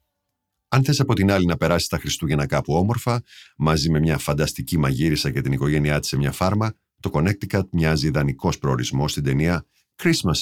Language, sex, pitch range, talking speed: Greek, male, 70-105 Hz, 180 wpm